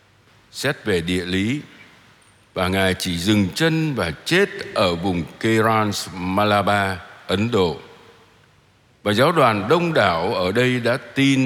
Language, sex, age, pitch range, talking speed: Vietnamese, male, 60-79, 95-125 Hz, 135 wpm